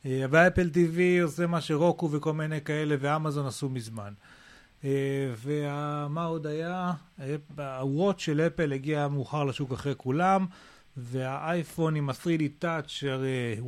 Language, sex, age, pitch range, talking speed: Hebrew, male, 30-49, 135-170 Hz, 125 wpm